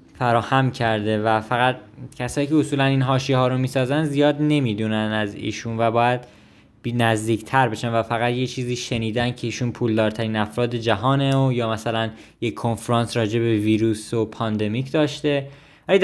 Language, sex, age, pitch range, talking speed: Persian, male, 20-39, 115-140 Hz, 160 wpm